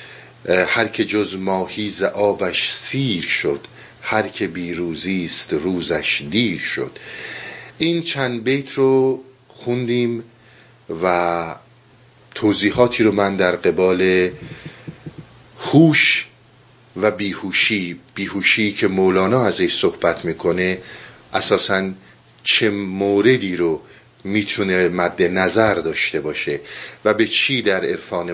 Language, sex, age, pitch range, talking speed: Persian, male, 50-69, 95-120 Hz, 100 wpm